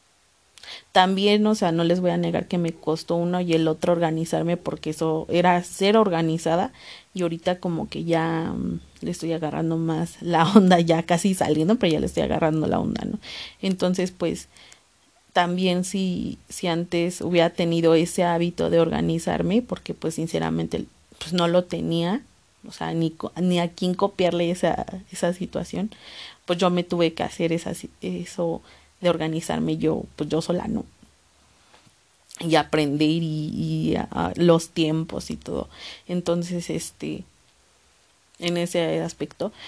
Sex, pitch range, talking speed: female, 160-180 Hz, 155 wpm